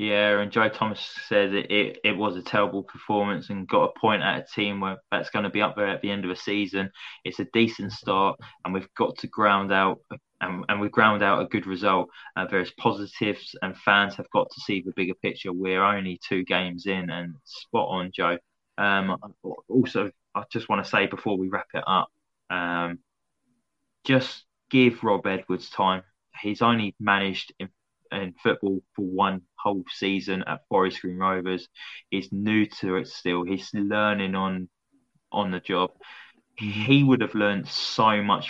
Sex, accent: male, British